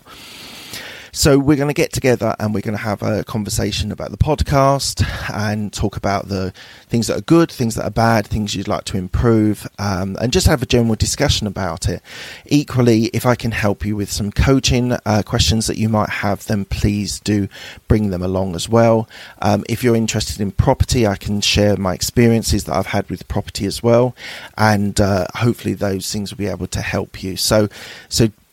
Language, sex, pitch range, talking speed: English, male, 100-115 Hz, 200 wpm